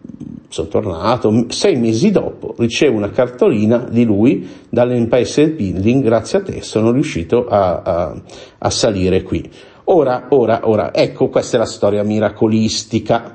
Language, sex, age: Italian, male, 50-69